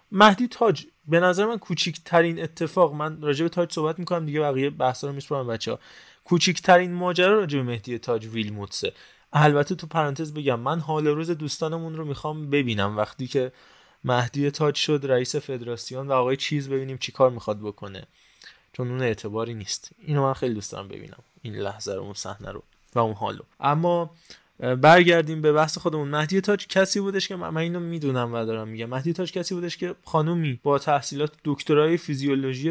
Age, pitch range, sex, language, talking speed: 20-39, 125-160 Hz, male, Persian, 170 wpm